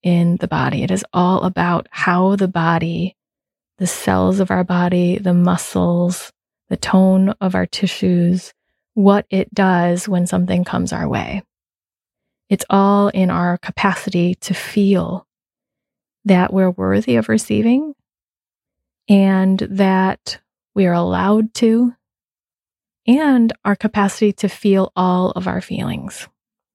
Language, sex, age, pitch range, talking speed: English, female, 30-49, 180-205 Hz, 130 wpm